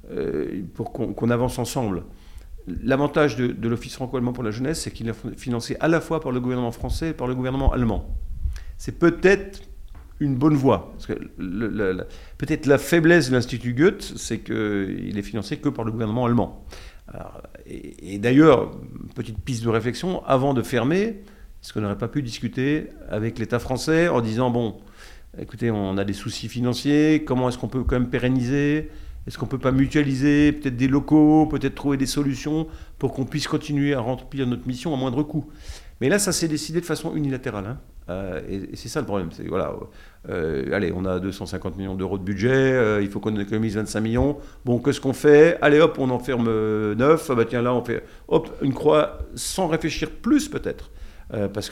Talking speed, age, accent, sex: 200 wpm, 50-69, French, male